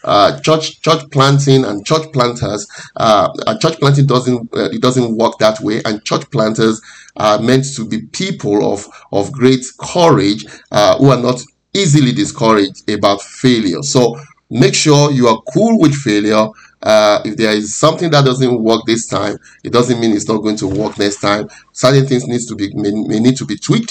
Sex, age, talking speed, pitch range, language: male, 30-49, 195 wpm, 110-140 Hz, English